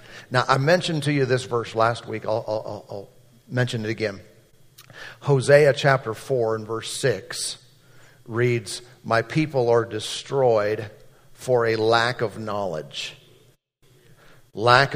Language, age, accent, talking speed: English, 50-69, American, 130 wpm